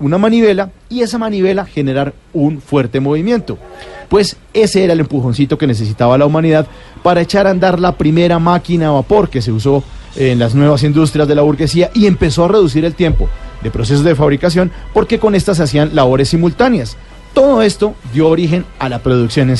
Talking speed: 190 wpm